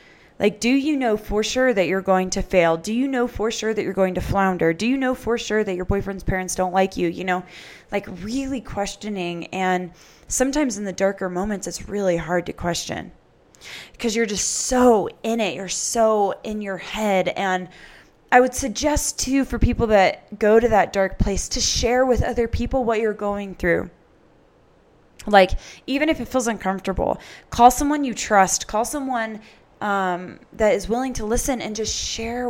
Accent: American